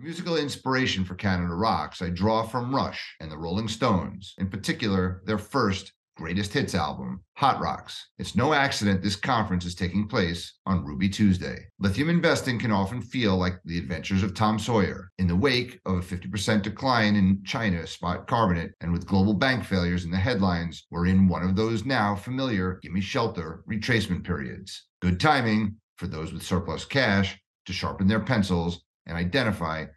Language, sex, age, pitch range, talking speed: English, male, 40-59, 90-110 Hz, 175 wpm